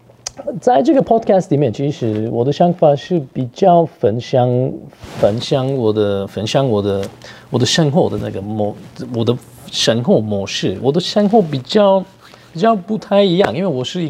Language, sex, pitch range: Chinese, male, 110-160 Hz